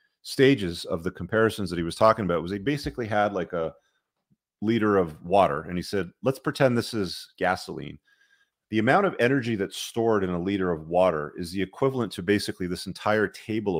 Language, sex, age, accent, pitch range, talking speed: English, male, 30-49, American, 85-110 Hz, 195 wpm